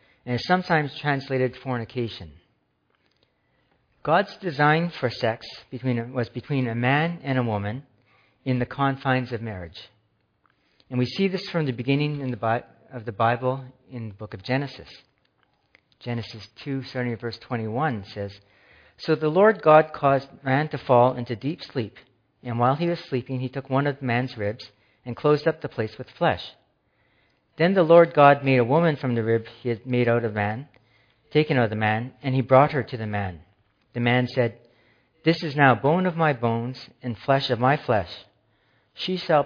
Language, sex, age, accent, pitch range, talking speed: English, male, 50-69, American, 115-135 Hz, 180 wpm